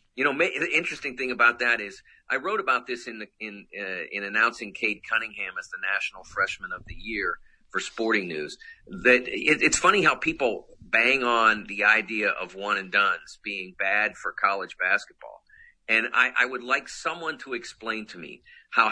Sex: male